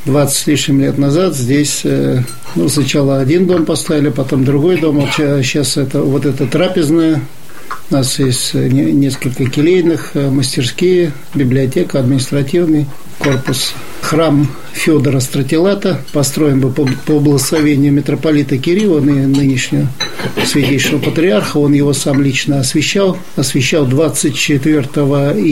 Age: 50-69